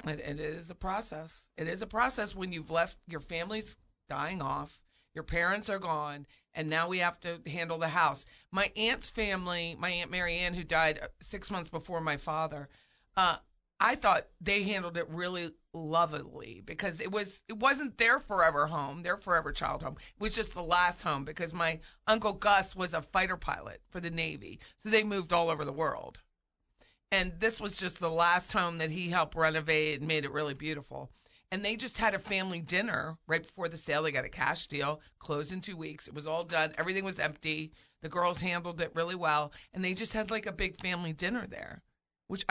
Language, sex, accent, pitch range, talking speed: English, female, American, 160-195 Hz, 205 wpm